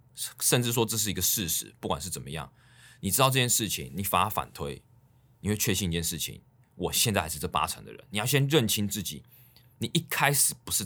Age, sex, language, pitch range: 20-39, male, Chinese, 95-130 Hz